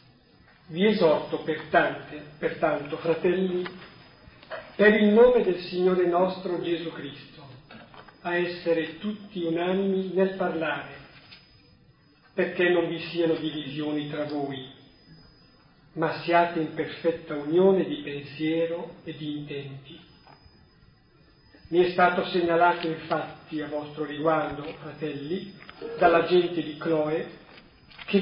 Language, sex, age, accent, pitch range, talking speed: Italian, male, 40-59, native, 150-180 Hz, 105 wpm